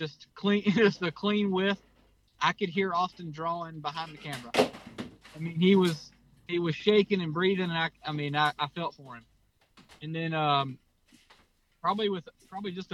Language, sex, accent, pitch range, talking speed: English, male, American, 140-175 Hz, 180 wpm